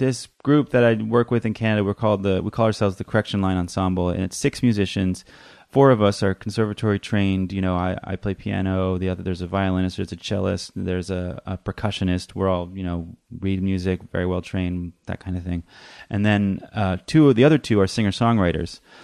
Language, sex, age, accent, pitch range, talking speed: English, male, 30-49, American, 90-105 Hz, 220 wpm